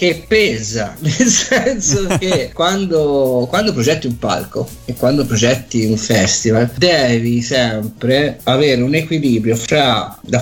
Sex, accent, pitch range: male, native, 120-155 Hz